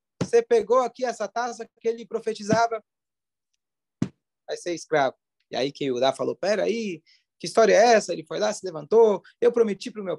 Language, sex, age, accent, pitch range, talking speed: Portuguese, male, 20-39, Brazilian, 140-220 Hz, 195 wpm